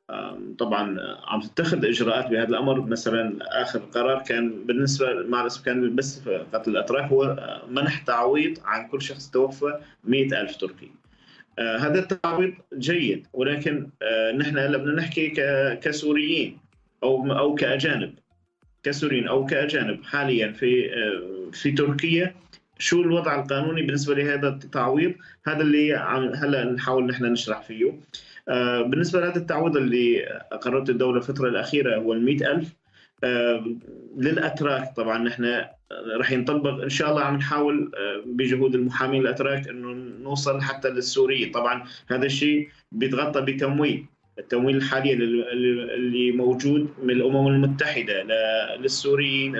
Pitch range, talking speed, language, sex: 125-145 Hz, 125 wpm, Arabic, male